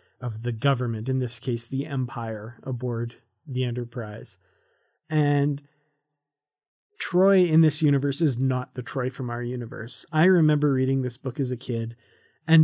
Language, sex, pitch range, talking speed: English, male, 125-150 Hz, 150 wpm